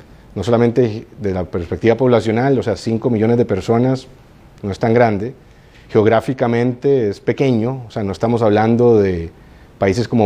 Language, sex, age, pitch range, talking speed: Spanish, male, 30-49, 100-125 Hz, 160 wpm